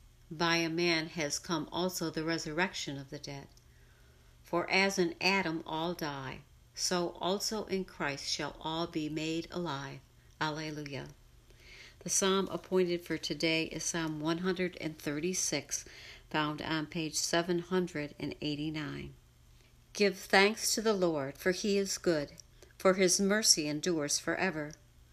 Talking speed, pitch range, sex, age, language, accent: 125 wpm, 150-185 Hz, female, 60-79, English, American